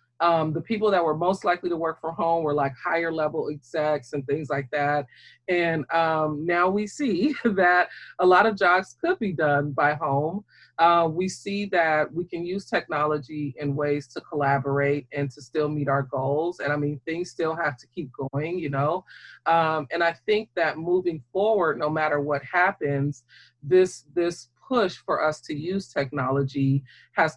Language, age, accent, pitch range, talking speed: English, 30-49, American, 145-180 Hz, 185 wpm